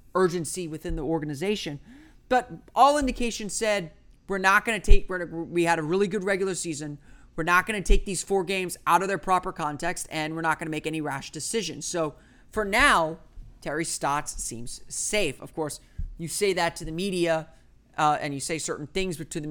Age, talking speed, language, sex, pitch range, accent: 30-49, 200 wpm, English, male, 145-190 Hz, American